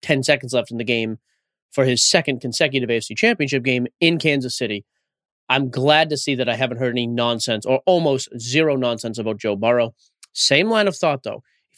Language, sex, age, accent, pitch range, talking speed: English, male, 30-49, American, 120-155 Hz, 200 wpm